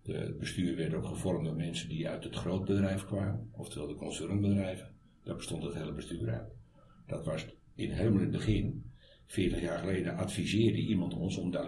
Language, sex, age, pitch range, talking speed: Dutch, male, 60-79, 85-115 Hz, 180 wpm